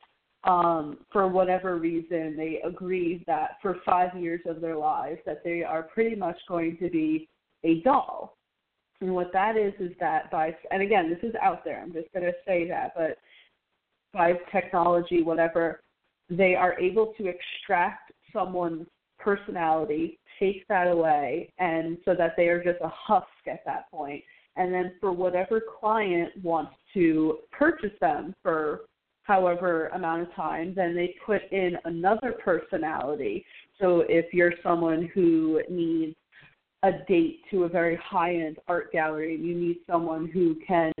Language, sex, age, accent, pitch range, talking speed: English, female, 20-39, American, 165-185 Hz, 155 wpm